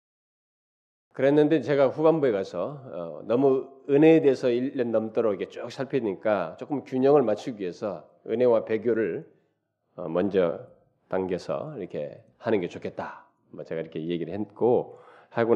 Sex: male